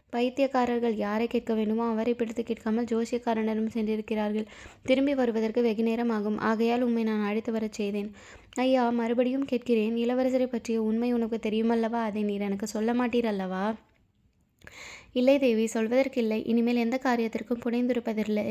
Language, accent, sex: Tamil, native, female